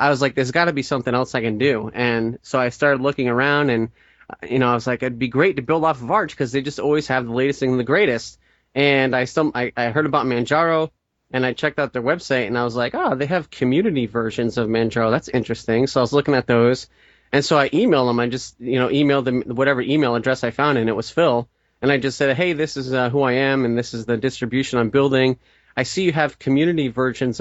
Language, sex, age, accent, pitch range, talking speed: English, male, 30-49, American, 120-140 Hz, 260 wpm